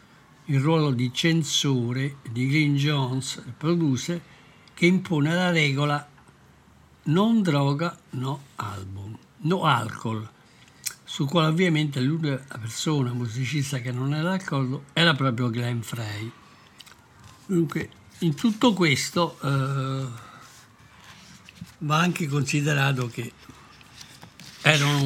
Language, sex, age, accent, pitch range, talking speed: Italian, male, 60-79, native, 130-160 Hz, 100 wpm